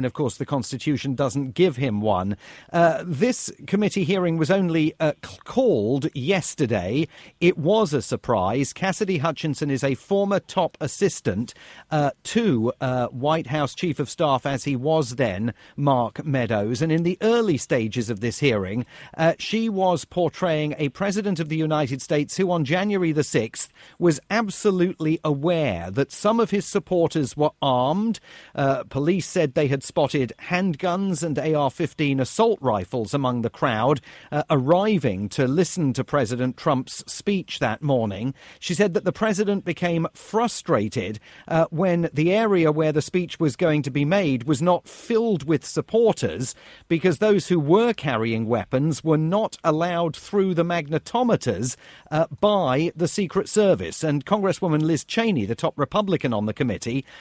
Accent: British